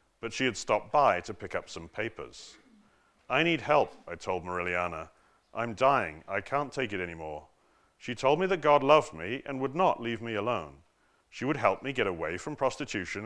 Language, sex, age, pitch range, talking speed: English, male, 40-59, 100-150 Hz, 200 wpm